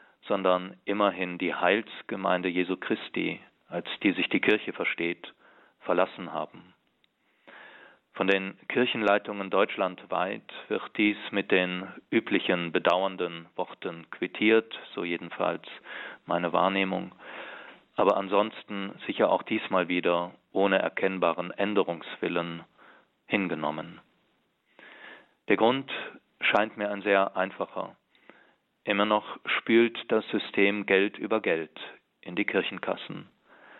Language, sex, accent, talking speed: German, male, German, 105 wpm